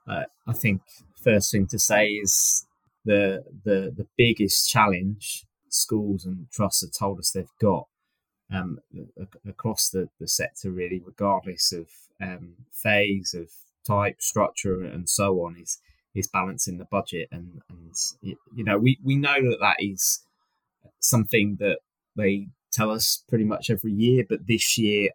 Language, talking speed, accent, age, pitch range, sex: English, 155 wpm, British, 20-39, 95-110 Hz, male